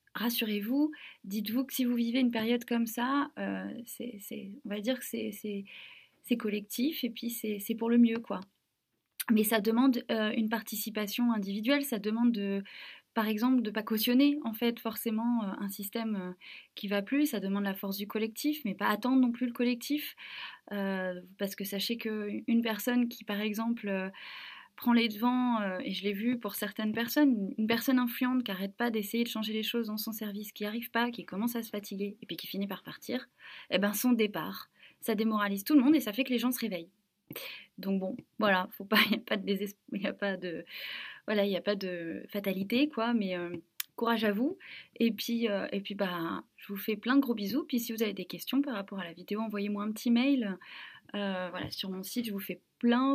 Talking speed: 210 wpm